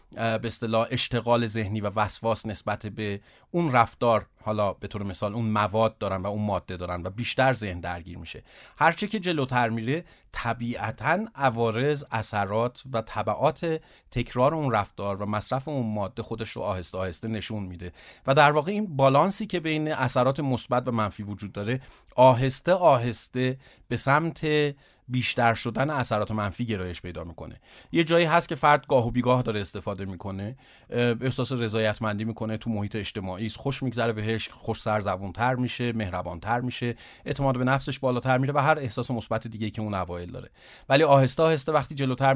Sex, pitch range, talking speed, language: male, 105-135 Hz, 165 wpm, Persian